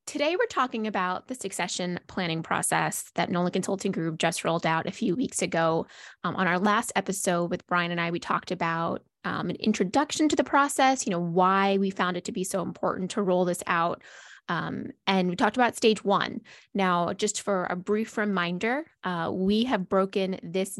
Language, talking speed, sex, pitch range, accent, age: English, 200 wpm, female, 175-215 Hz, American, 20-39